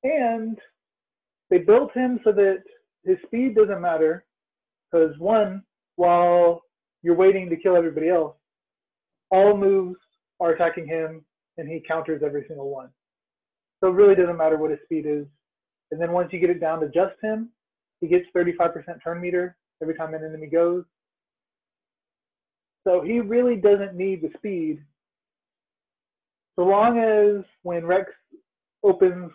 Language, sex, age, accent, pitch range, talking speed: English, male, 30-49, American, 160-195 Hz, 145 wpm